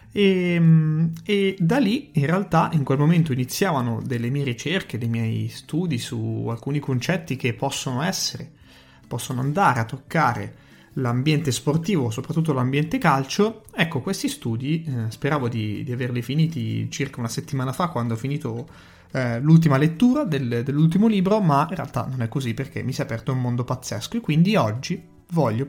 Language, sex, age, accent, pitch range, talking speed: Italian, male, 30-49, native, 125-170 Hz, 165 wpm